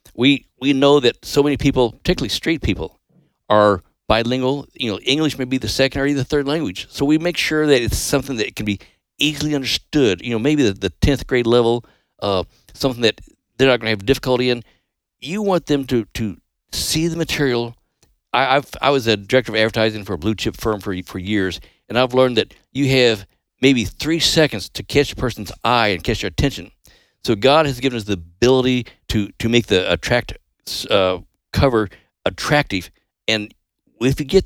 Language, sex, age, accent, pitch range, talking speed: English, male, 50-69, American, 105-140 Hz, 200 wpm